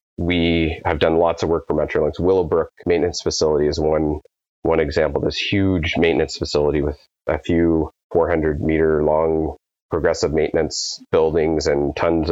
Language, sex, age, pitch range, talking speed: English, male, 30-49, 80-85 Hz, 145 wpm